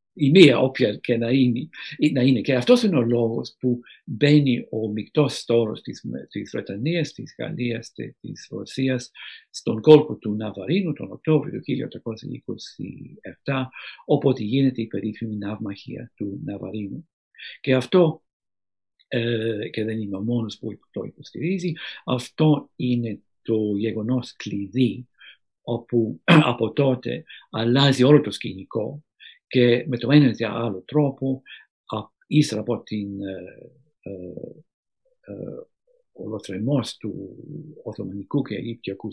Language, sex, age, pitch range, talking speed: Greek, male, 60-79, 110-150 Hz, 125 wpm